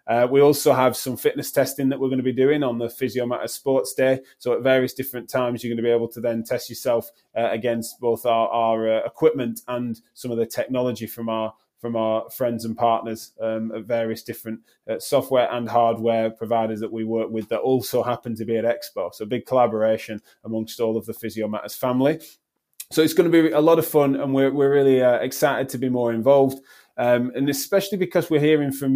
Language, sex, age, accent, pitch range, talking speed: English, male, 20-39, British, 115-135 Hz, 220 wpm